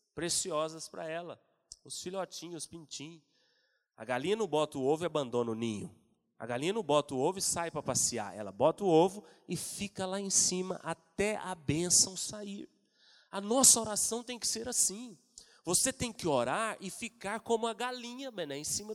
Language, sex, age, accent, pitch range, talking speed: Portuguese, male, 30-49, Brazilian, 165-245 Hz, 185 wpm